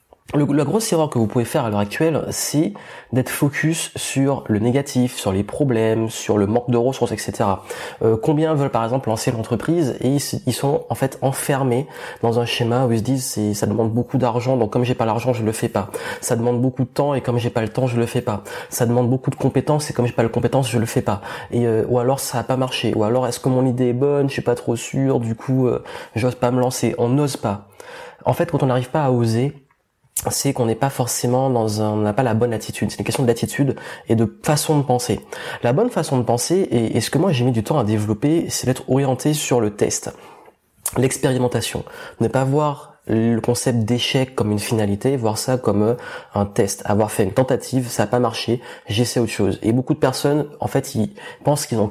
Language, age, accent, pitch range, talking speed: French, 20-39, French, 115-135 Hz, 245 wpm